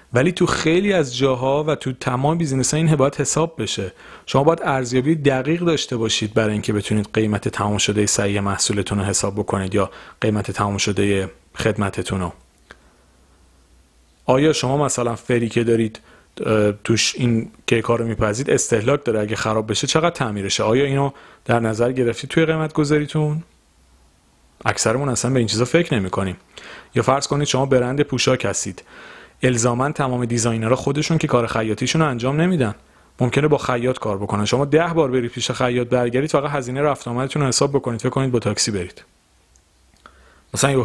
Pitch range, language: 105-140 Hz, Persian